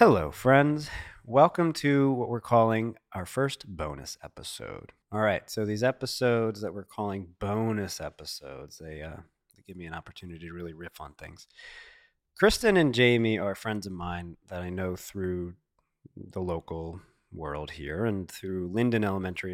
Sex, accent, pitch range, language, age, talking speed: male, American, 90-130 Hz, English, 30-49, 160 wpm